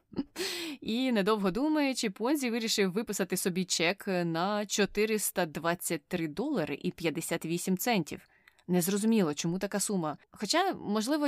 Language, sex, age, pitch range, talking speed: Ukrainian, female, 20-39, 165-215 Hz, 105 wpm